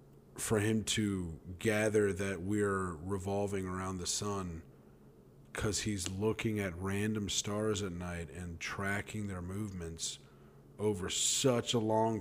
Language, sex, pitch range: English, male, 95-125 Hz